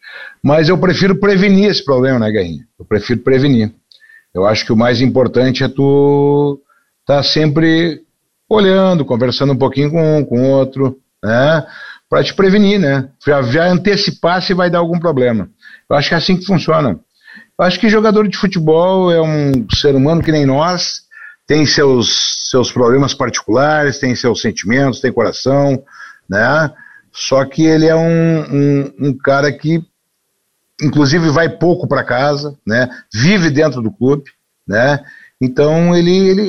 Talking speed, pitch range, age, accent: 160 wpm, 130-170 Hz, 60-79, Brazilian